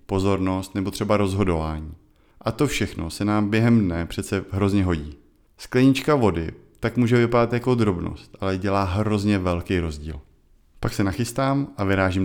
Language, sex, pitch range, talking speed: Czech, male, 95-125 Hz, 150 wpm